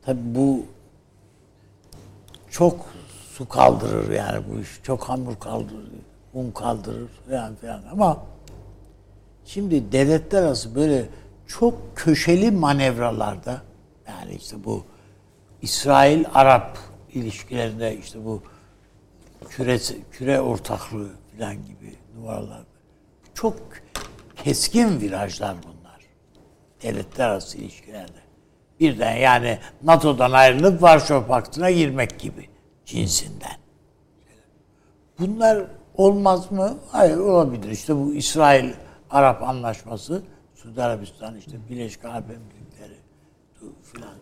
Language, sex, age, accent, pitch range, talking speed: Turkish, male, 60-79, native, 105-150 Hz, 90 wpm